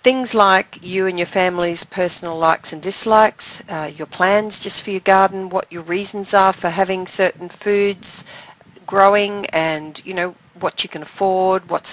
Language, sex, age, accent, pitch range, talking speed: English, female, 40-59, Australian, 160-200 Hz, 170 wpm